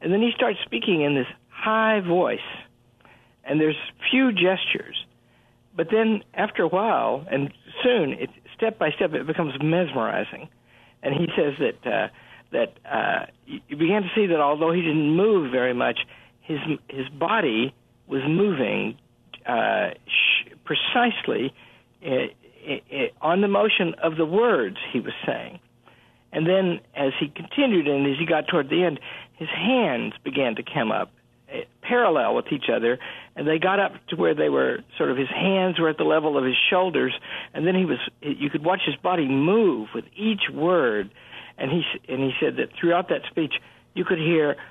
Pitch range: 150-200 Hz